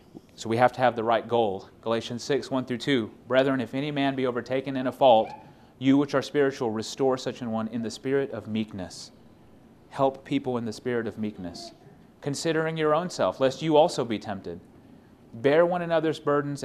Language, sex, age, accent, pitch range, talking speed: English, male, 30-49, American, 105-130 Hz, 190 wpm